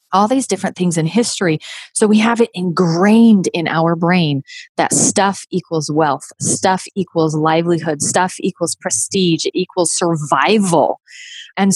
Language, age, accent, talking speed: English, 30-49, American, 140 wpm